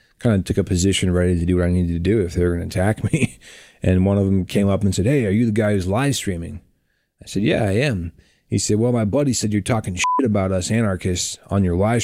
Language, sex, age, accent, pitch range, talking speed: English, male, 30-49, American, 90-110 Hz, 275 wpm